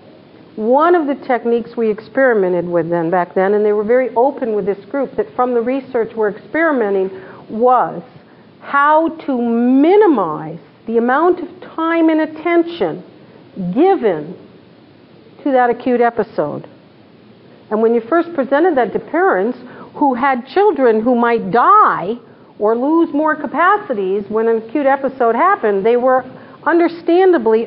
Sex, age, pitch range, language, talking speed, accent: female, 50-69, 225-290 Hz, English, 140 wpm, American